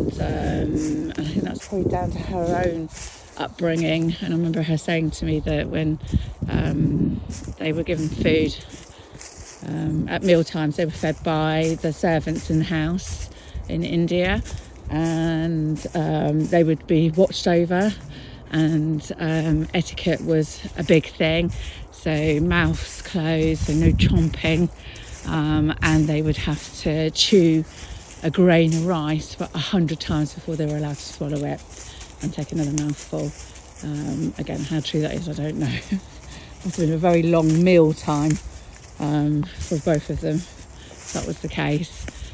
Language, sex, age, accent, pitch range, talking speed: English, female, 40-59, British, 150-165 Hz, 155 wpm